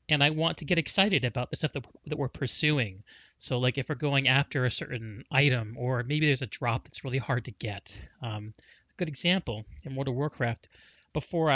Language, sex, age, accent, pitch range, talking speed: English, male, 30-49, American, 120-150 Hz, 215 wpm